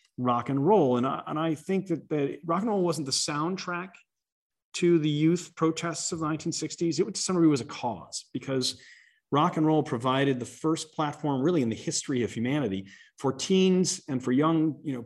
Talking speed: 205 wpm